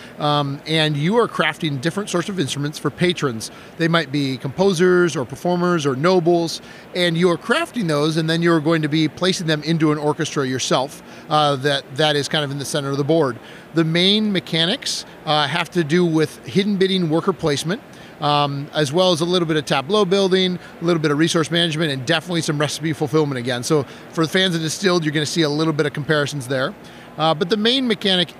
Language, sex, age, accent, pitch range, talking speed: English, male, 40-59, American, 150-180 Hz, 215 wpm